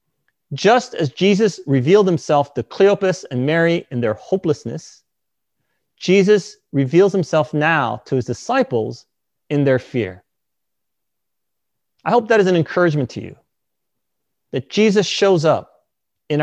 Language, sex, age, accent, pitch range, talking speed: English, male, 30-49, American, 130-195 Hz, 130 wpm